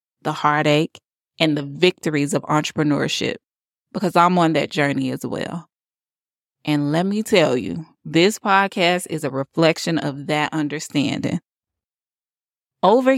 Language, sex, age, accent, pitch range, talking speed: English, female, 20-39, American, 155-190 Hz, 125 wpm